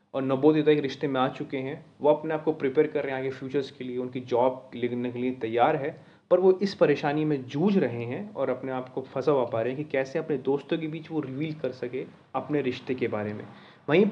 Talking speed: 255 wpm